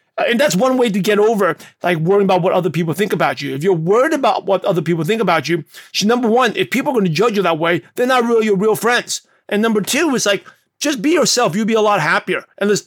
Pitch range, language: 180-220 Hz, English